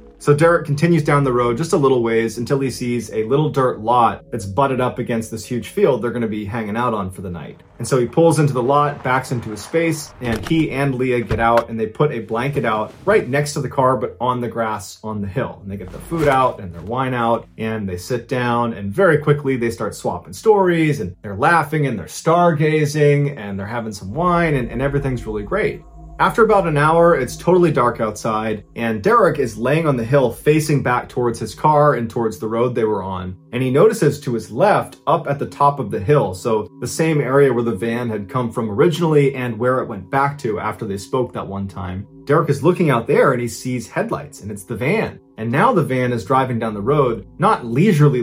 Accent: American